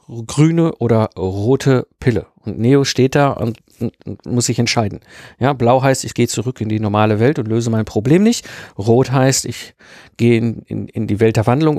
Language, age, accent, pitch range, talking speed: German, 50-69, German, 115-160 Hz, 195 wpm